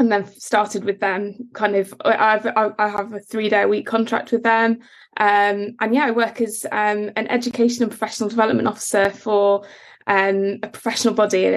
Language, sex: English, female